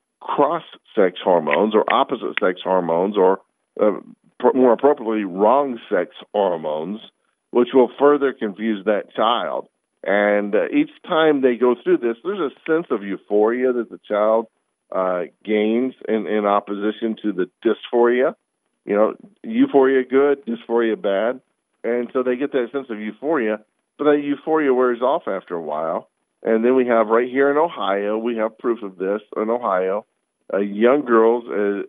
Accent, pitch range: American, 105-130 Hz